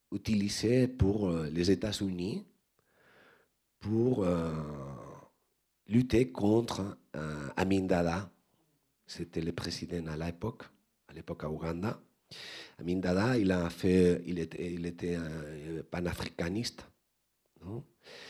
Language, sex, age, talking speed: French, male, 40-59, 105 wpm